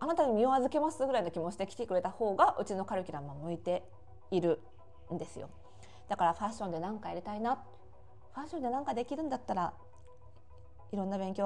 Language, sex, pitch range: Japanese, female, 165-220 Hz